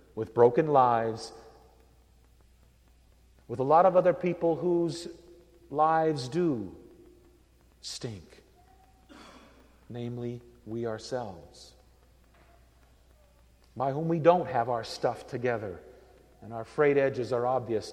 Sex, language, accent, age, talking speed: male, English, American, 50-69, 100 wpm